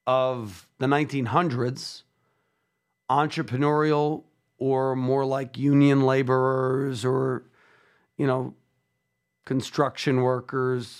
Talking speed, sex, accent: 75 wpm, male, American